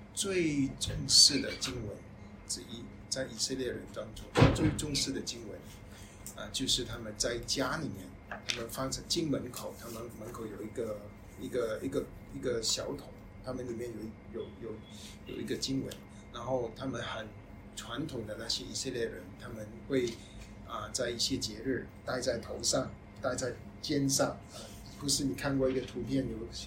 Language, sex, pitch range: Chinese, male, 100-130 Hz